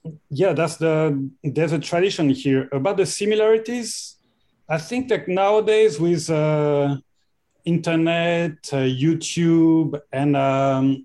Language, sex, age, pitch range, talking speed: English, male, 40-59, 140-170 Hz, 115 wpm